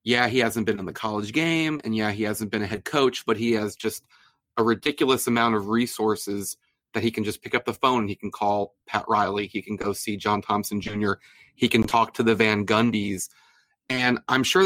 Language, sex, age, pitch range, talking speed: English, male, 30-49, 110-130 Hz, 230 wpm